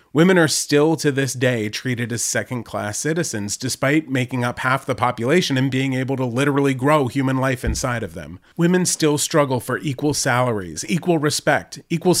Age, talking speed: 30-49, 175 wpm